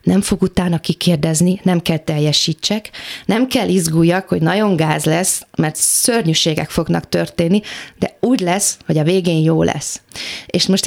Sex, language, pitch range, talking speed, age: female, Hungarian, 170-205 Hz, 155 wpm, 30-49